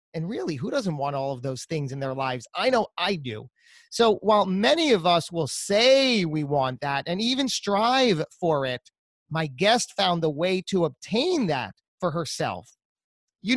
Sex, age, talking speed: male, 30-49, 185 wpm